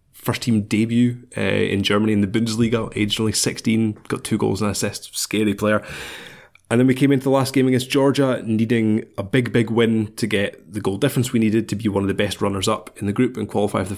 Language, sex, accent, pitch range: English, male, British, 100-115 Hz